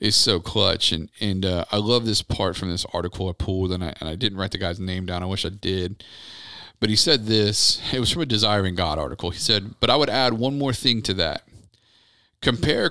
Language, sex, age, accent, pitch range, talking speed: English, male, 40-59, American, 95-125 Hz, 240 wpm